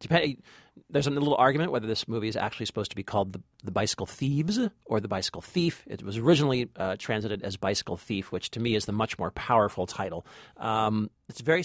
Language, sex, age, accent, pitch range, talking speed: English, male, 40-59, American, 110-155 Hz, 210 wpm